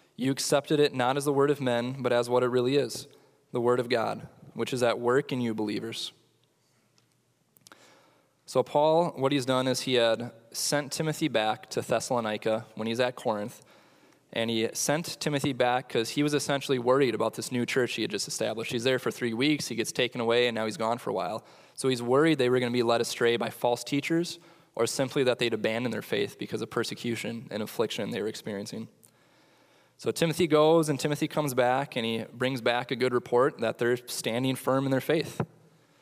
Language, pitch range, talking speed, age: English, 120-140 Hz, 210 wpm, 20-39